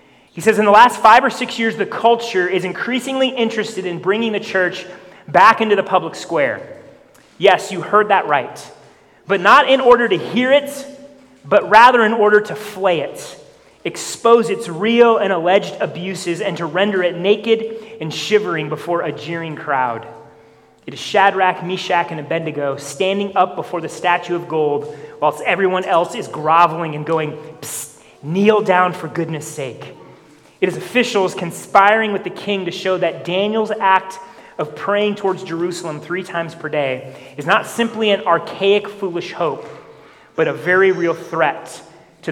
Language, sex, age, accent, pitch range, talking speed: English, male, 30-49, American, 160-205 Hz, 165 wpm